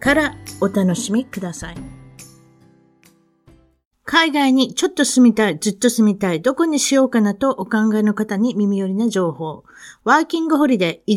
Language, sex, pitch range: Japanese, female, 195-255 Hz